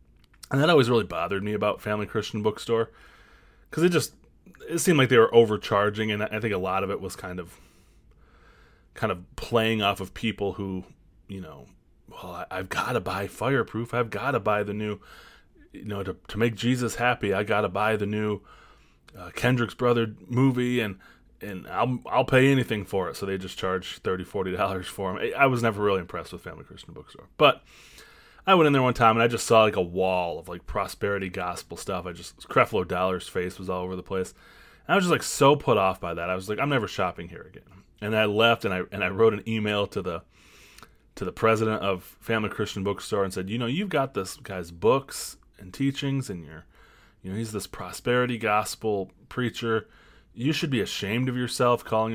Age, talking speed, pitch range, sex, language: 20-39, 215 wpm, 95-115 Hz, male, English